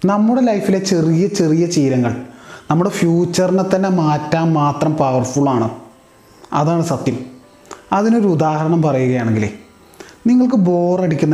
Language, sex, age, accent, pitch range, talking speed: Malayalam, male, 30-49, native, 135-165 Hz, 95 wpm